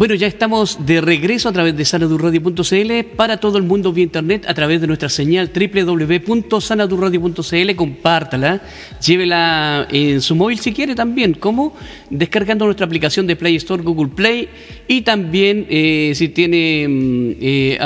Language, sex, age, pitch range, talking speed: Spanish, male, 40-59, 150-195 Hz, 150 wpm